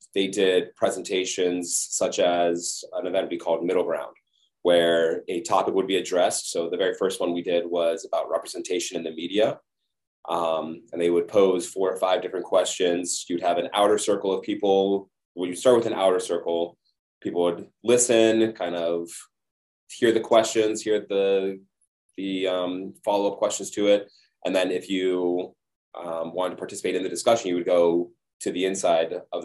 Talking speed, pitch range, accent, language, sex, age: 180 wpm, 85-100 Hz, American, English, male, 20-39